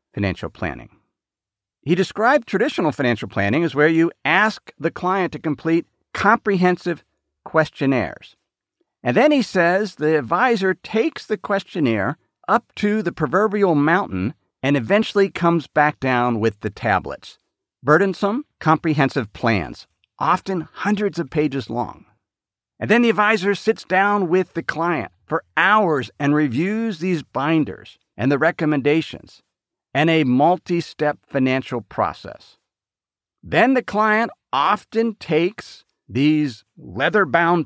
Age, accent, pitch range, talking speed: 50-69, American, 120-190 Hz, 125 wpm